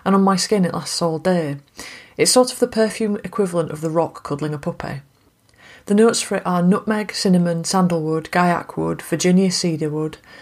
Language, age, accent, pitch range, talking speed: English, 30-49, British, 155-185 Hz, 190 wpm